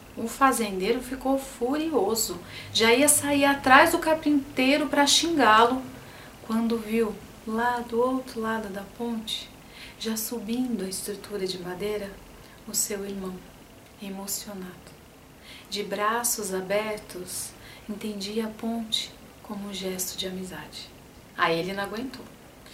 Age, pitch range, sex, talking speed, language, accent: 40-59, 195-235 Hz, female, 120 wpm, Portuguese, Brazilian